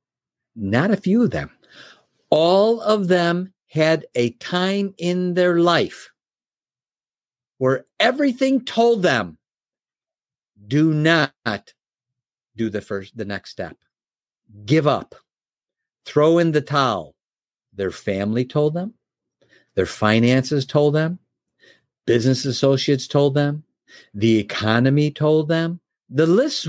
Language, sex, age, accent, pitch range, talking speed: English, male, 50-69, American, 130-195 Hz, 110 wpm